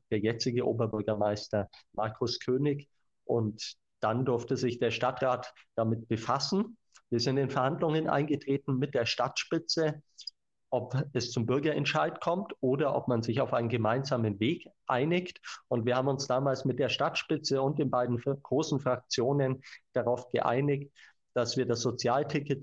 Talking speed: 145 wpm